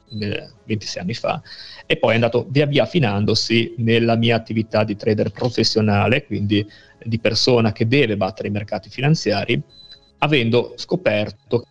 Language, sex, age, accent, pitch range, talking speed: Italian, male, 40-59, native, 110-130 Hz, 140 wpm